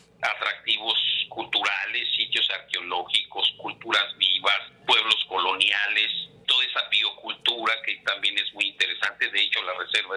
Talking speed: 120 wpm